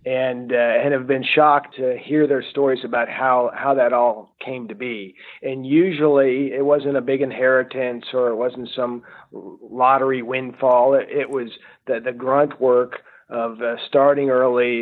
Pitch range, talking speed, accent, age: 125-145 Hz, 170 wpm, American, 40-59